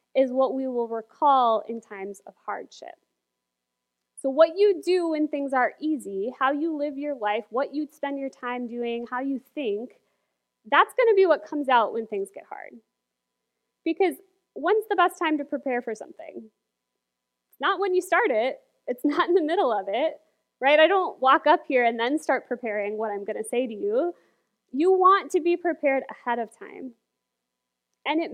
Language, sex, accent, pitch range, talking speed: English, female, American, 235-320 Hz, 190 wpm